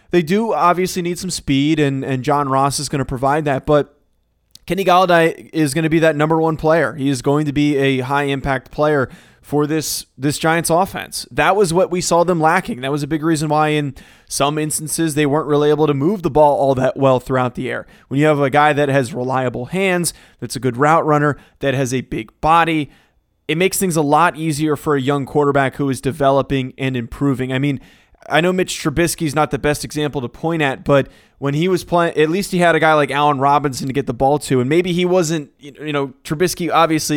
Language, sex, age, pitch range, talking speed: English, male, 20-39, 135-160 Hz, 230 wpm